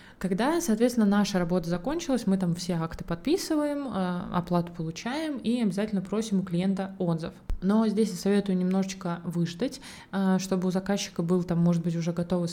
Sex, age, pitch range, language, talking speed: female, 20-39, 175-205 Hz, Russian, 155 wpm